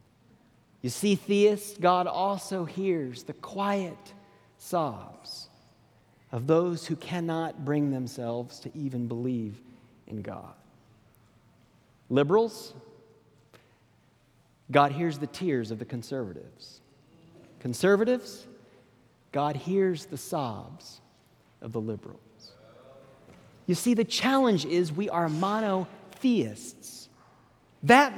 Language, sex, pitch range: English, male, 135-210 Hz